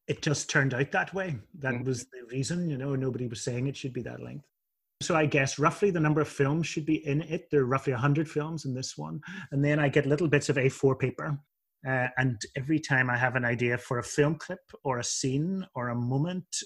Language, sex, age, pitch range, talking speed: English, male, 30-49, 125-150 Hz, 240 wpm